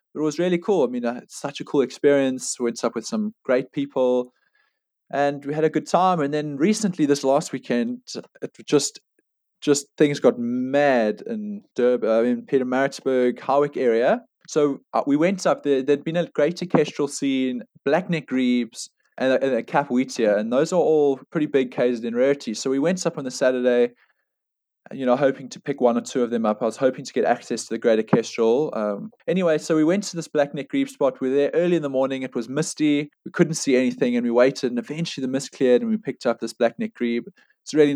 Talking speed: 225 wpm